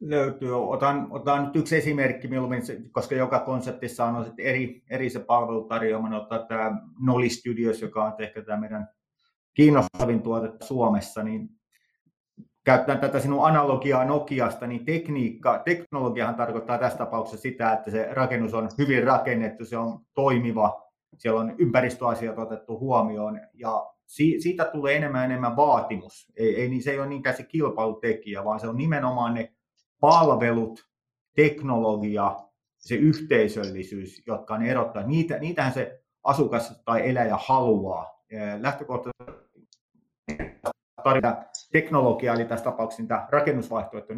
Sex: male